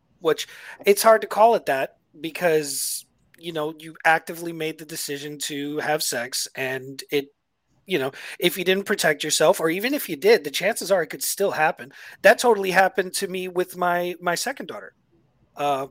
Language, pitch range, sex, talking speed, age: English, 150-195 Hz, male, 190 wpm, 40-59